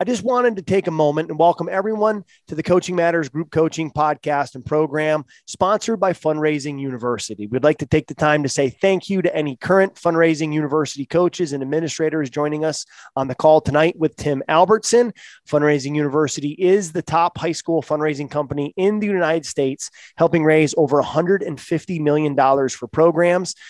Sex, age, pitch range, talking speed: male, 30-49, 145-170 Hz, 175 wpm